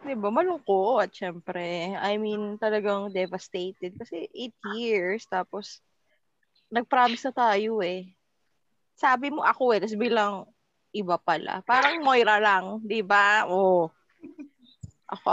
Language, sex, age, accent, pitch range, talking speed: Filipino, female, 20-39, native, 190-265 Hz, 120 wpm